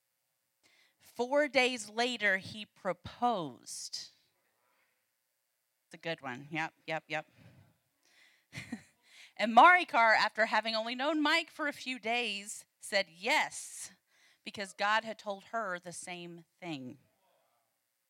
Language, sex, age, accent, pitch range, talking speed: English, female, 30-49, American, 160-235 Hz, 110 wpm